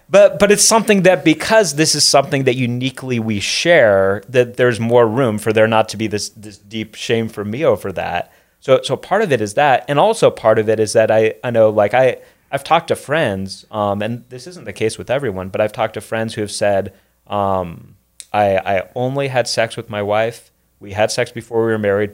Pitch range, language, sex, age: 105-125 Hz, English, male, 30-49